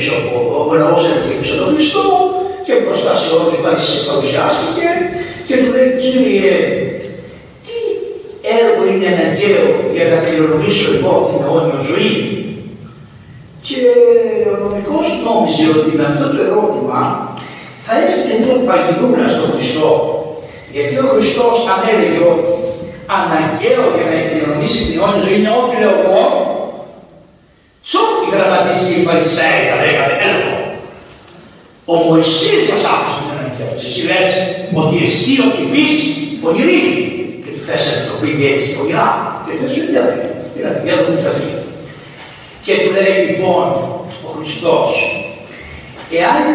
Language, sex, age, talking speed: Greek, male, 60-79, 105 wpm